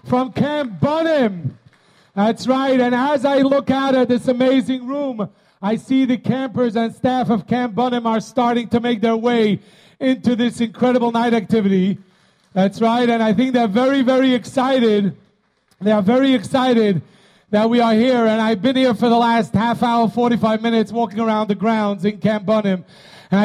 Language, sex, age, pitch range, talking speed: English, male, 40-59, 205-250 Hz, 180 wpm